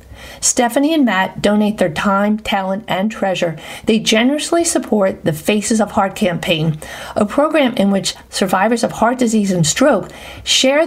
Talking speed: 155 wpm